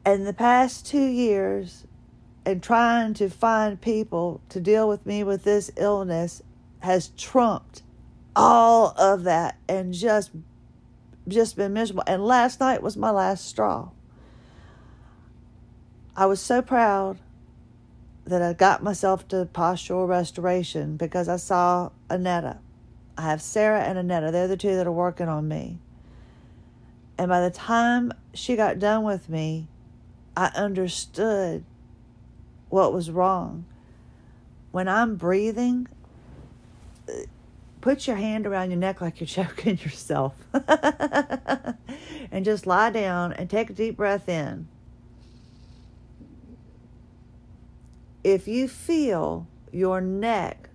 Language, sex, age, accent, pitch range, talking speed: English, female, 40-59, American, 155-220 Hz, 125 wpm